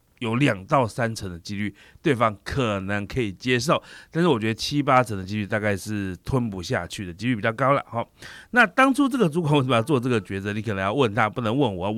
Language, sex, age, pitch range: Chinese, male, 30-49, 105-145 Hz